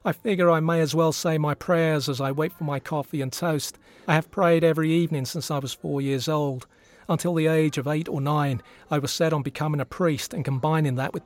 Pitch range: 130-160 Hz